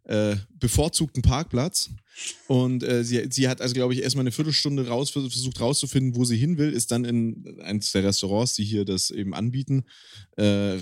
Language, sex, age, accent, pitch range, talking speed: German, male, 30-49, German, 110-160 Hz, 175 wpm